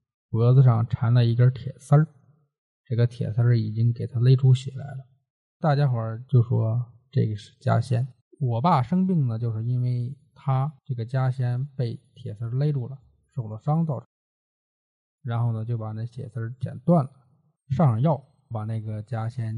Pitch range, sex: 120-150 Hz, male